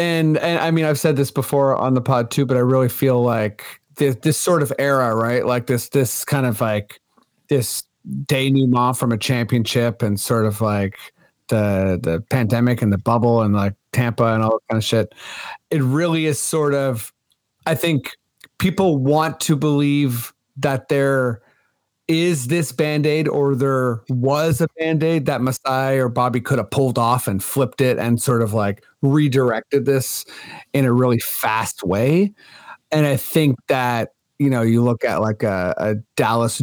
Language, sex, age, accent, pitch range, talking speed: English, male, 30-49, American, 115-145 Hz, 180 wpm